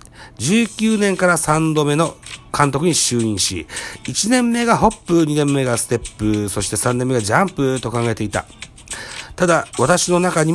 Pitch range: 120-185 Hz